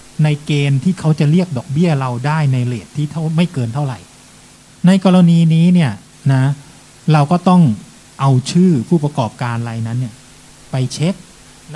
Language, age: Thai, 20-39